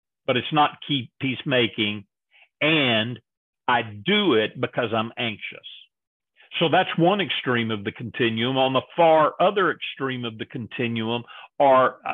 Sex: male